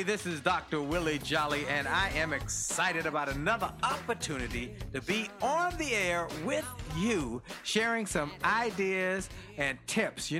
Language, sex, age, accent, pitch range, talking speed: English, male, 50-69, American, 135-180 Hz, 145 wpm